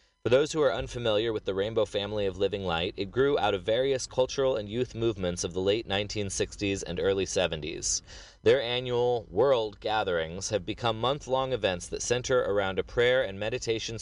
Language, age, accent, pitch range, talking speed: English, 30-49, American, 105-135 Hz, 185 wpm